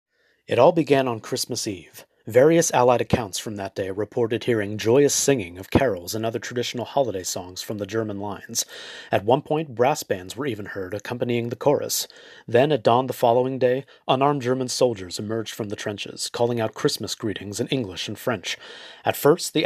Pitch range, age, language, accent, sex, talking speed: 110-135 Hz, 30-49, English, American, male, 190 wpm